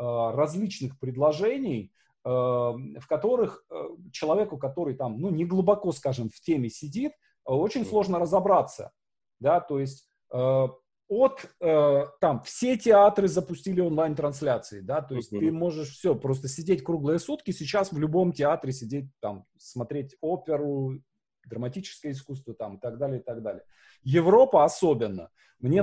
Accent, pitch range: native, 130-180 Hz